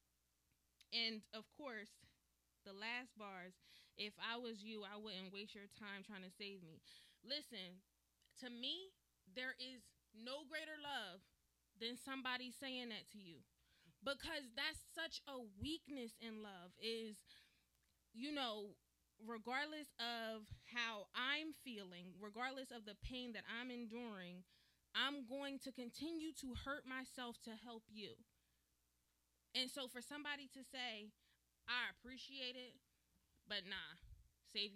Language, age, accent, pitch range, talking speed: English, 20-39, American, 190-255 Hz, 135 wpm